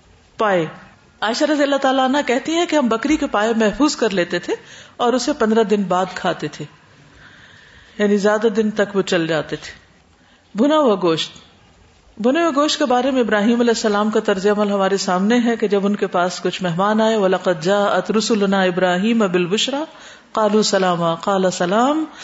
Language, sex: Urdu, female